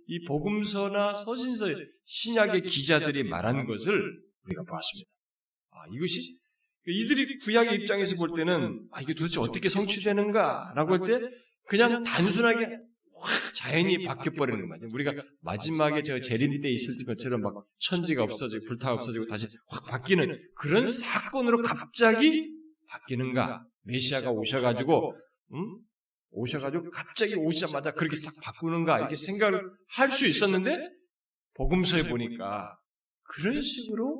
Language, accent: Korean, native